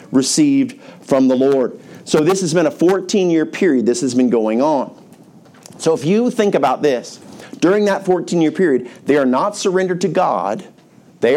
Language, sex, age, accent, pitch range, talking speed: English, male, 50-69, American, 135-195 Hz, 175 wpm